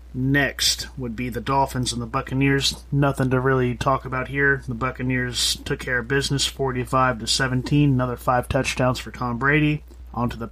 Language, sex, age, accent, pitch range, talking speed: English, male, 30-49, American, 120-145 Hz, 170 wpm